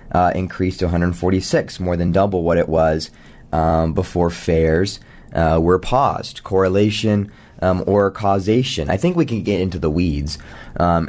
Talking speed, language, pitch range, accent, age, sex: 155 wpm, English, 90-115 Hz, American, 20-39, male